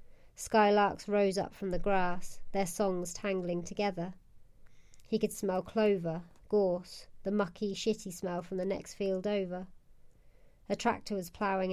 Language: English